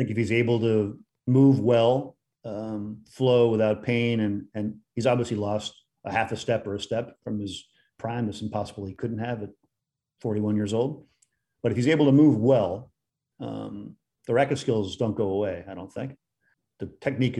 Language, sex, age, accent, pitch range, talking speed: English, male, 40-59, American, 105-130 Hz, 185 wpm